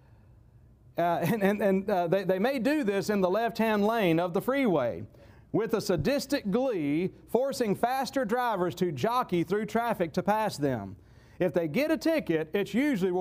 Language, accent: English, American